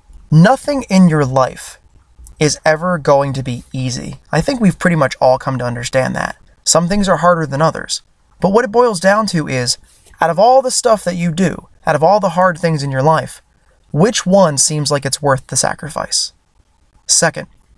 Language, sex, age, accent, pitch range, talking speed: English, male, 20-39, American, 135-200 Hz, 200 wpm